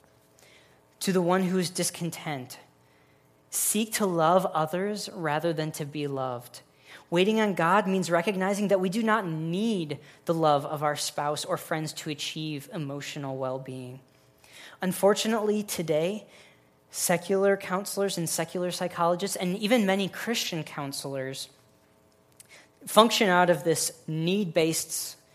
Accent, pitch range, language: American, 140-185 Hz, English